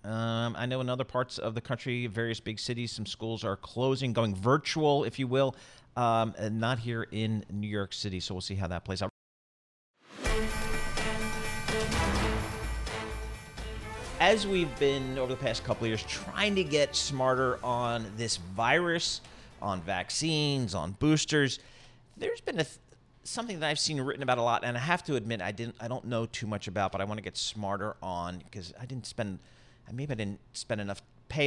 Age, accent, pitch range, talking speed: 40-59, American, 105-135 Hz, 190 wpm